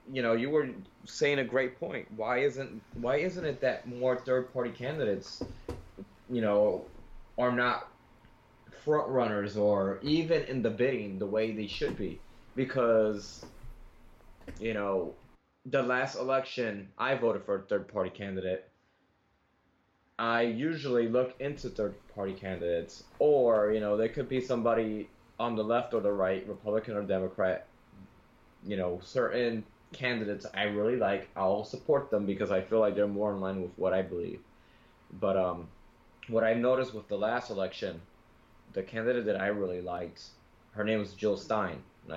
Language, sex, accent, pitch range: English, male, American, 95-125 Hz